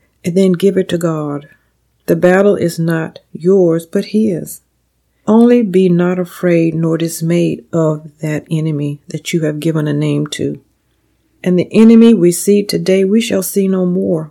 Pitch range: 165-195 Hz